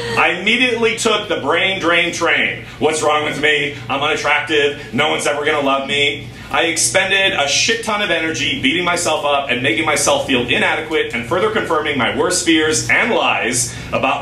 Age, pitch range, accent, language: 30-49, 130-175 Hz, American, English